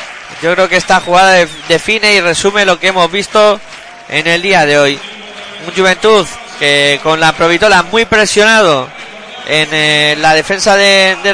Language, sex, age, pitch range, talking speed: Spanish, male, 20-39, 175-220 Hz, 165 wpm